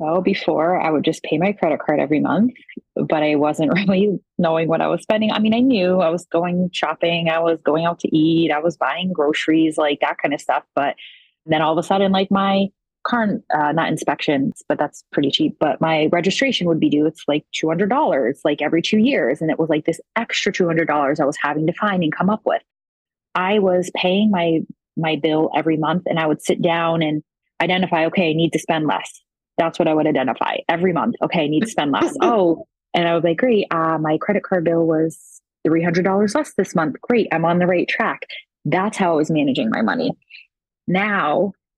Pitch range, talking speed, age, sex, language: 160-195 Hz, 220 wpm, 30-49, female, English